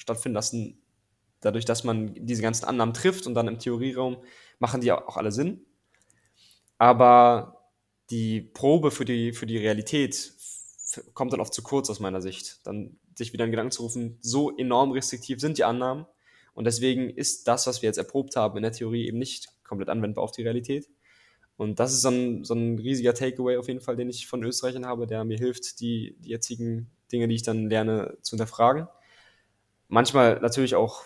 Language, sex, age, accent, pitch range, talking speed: German, male, 10-29, German, 110-130 Hz, 195 wpm